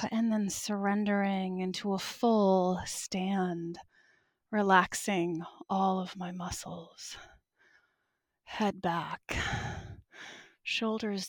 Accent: American